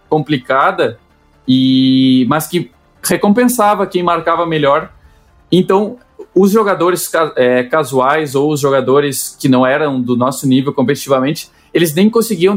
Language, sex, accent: Portuguese, male, Brazilian